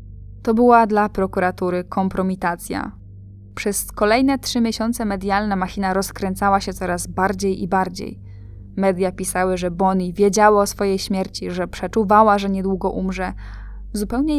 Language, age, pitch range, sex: Polish, 10-29, 180-210 Hz, female